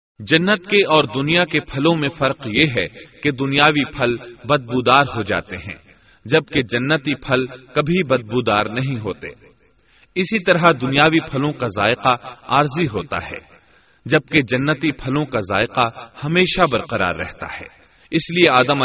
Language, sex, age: Urdu, male, 40-59